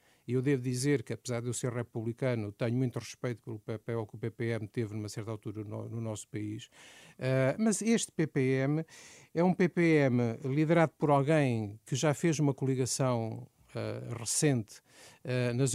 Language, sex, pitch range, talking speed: Portuguese, male, 120-160 Hz, 170 wpm